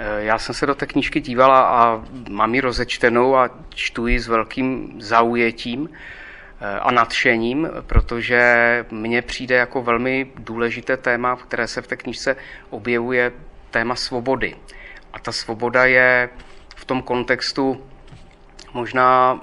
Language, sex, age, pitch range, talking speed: Czech, male, 30-49, 115-130 Hz, 130 wpm